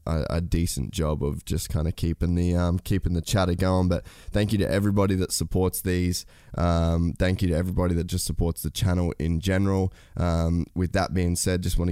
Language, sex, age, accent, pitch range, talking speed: English, male, 10-29, Australian, 85-95 Hz, 205 wpm